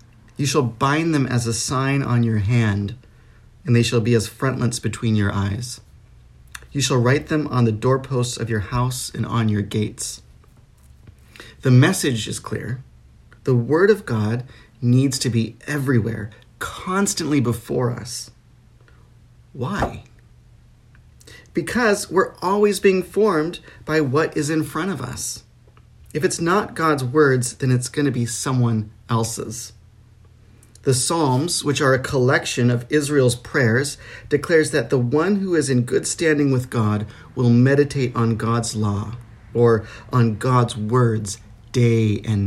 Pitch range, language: 115-145 Hz, English